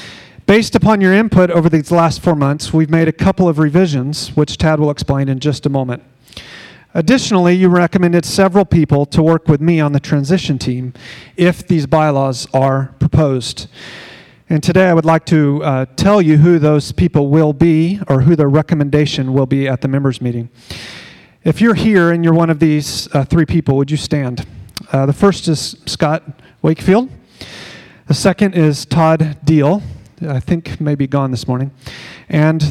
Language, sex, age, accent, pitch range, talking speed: English, male, 40-59, American, 140-175 Hz, 180 wpm